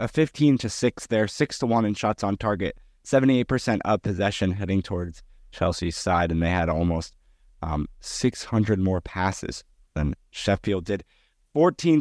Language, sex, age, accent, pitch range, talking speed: English, male, 20-39, American, 95-130 Hz, 165 wpm